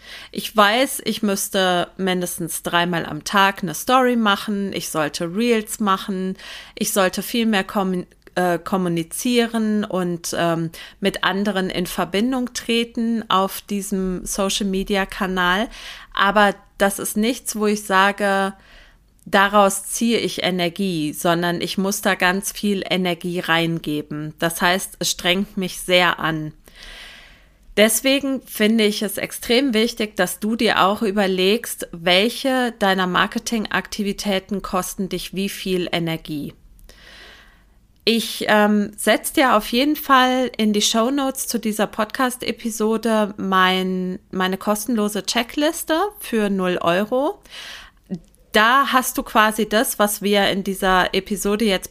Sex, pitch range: female, 180-220 Hz